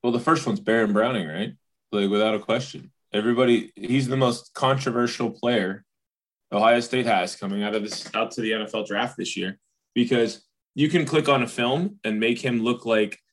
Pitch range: 105-125 Hz